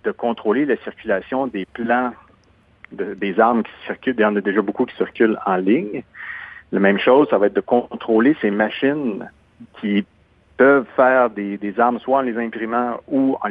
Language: French